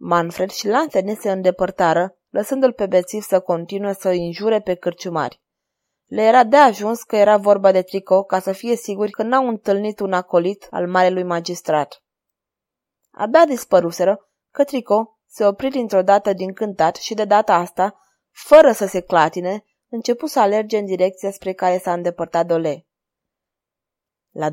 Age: 20-39